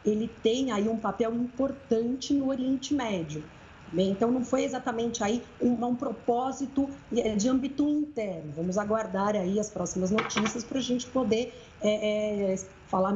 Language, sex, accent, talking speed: Portuguese, female, Brazilian, 155 wpm